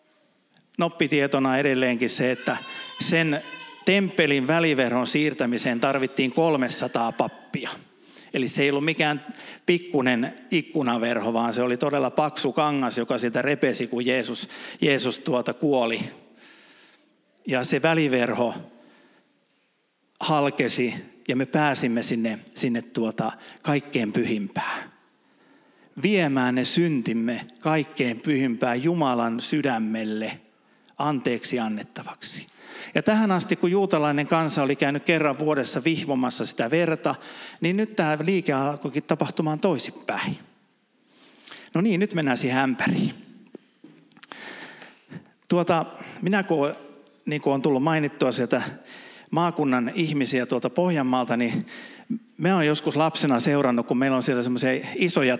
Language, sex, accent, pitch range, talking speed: Finnish, male, native, 125-165 Hz, 110 wpm